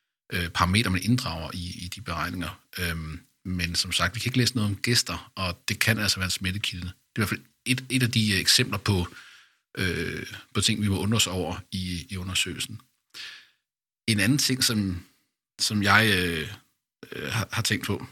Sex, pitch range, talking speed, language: male, 90-110 Hz, 170 wpm, Danish